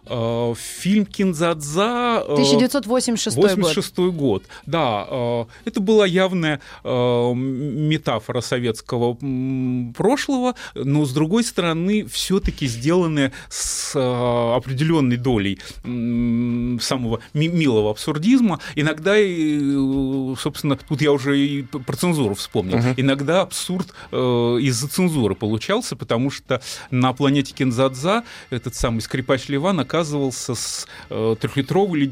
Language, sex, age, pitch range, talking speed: Russian, male, 30-49, 120-165 Hz, 90 wpm